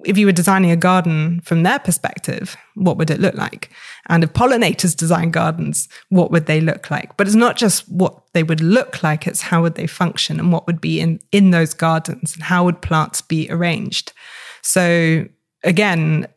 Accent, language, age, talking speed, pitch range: British, English, 20-39, 200 wpm, 165-190 Hz